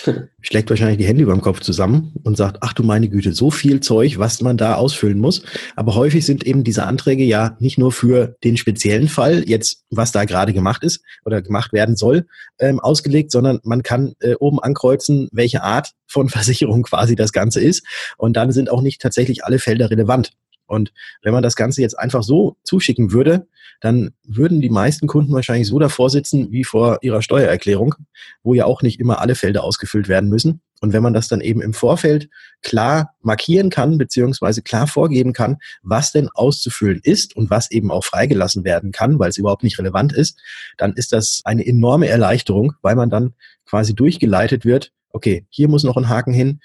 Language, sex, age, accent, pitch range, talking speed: German, male, 30-49, German, 110-135 Hz, 200 wpm